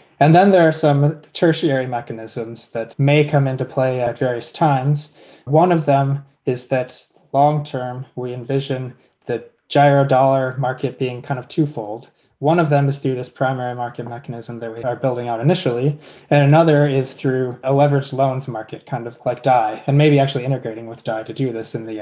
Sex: male